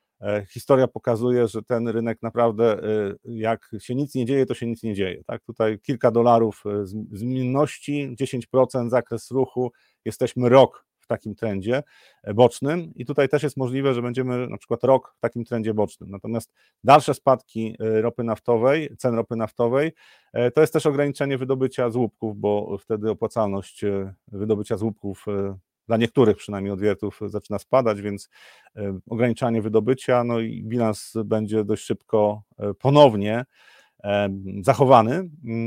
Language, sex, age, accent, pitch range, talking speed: Polish, male, 40-59, native, 105-125 Hz, 135 wpm